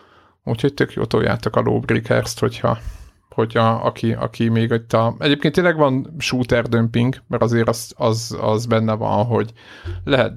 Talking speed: 145 wpm